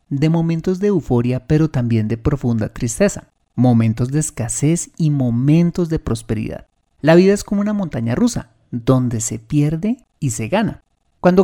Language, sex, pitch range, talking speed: Spanish, male, 120-165 Hz, 155 wpm